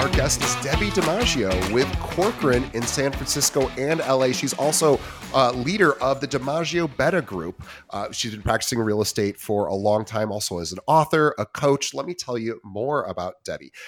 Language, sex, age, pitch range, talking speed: English, male, 30-49, 100-135 Hz, 190 wpm